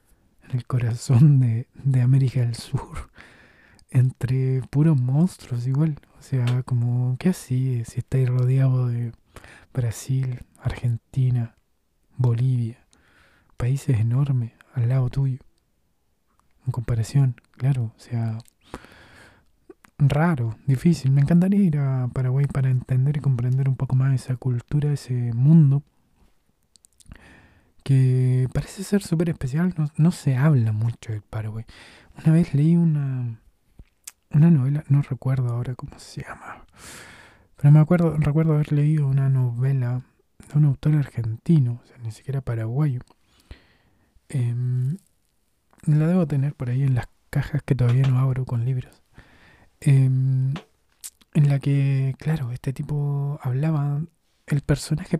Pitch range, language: 120-145 Hz, Spanish